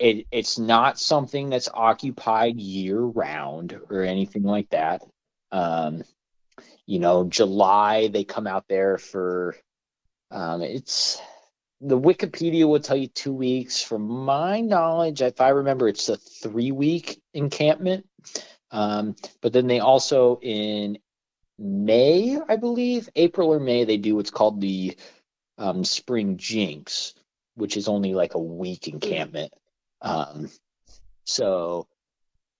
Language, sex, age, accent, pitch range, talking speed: English, male, 30-49, American, 100-145 Hz, 120 wpm